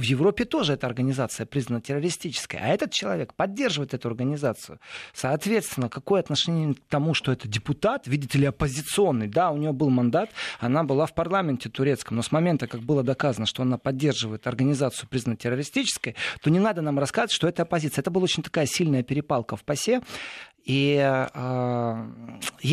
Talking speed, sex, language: 170 wpm, male, Russian